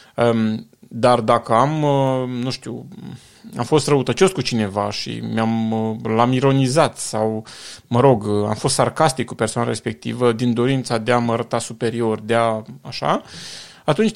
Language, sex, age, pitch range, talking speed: Romanian, male, 30-49, 115-145 Hz, 140 wpm